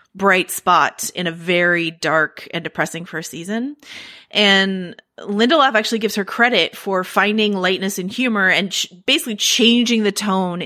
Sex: female